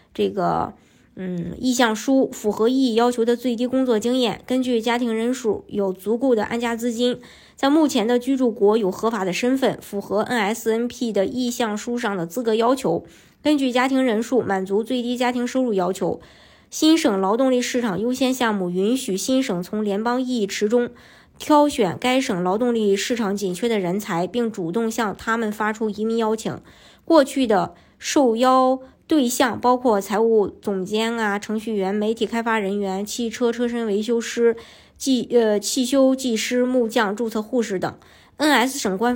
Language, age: Chinese, 20-39